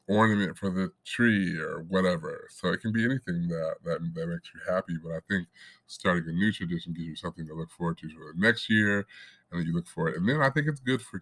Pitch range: 90-120 Hz